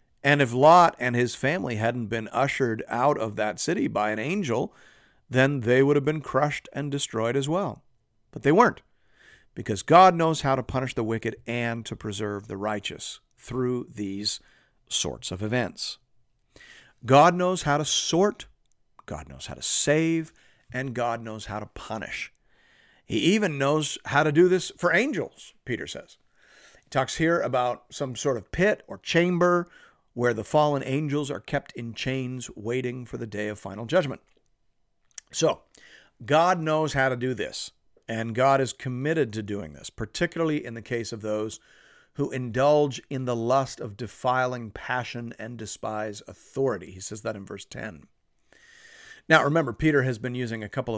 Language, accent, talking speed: English, American, 170 wpm